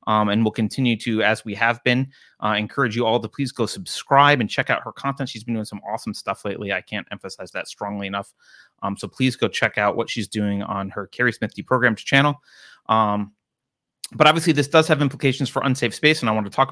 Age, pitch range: 30-49, 105-130 Hz